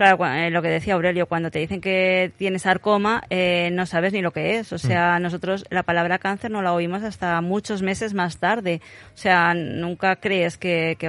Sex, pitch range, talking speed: female, 170-190 Hz, 205 wpm